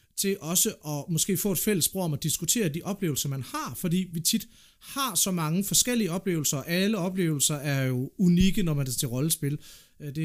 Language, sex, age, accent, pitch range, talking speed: Danish, male, 30-49, native, 145-190 Hz, 205 wpm